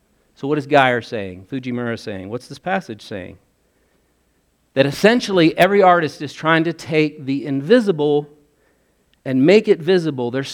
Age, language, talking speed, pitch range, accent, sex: 50-69, English, 150 wpm, 135-180 Hz, American, male